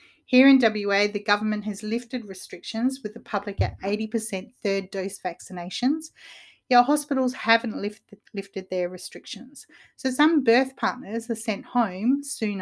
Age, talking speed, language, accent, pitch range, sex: 40-59, 140 wpm, English, Australian, 190-235 Hz, female